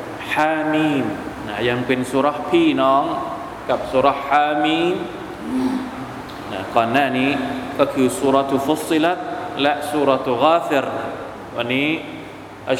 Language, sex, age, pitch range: Thai, male, 20-39, 130-155 Hz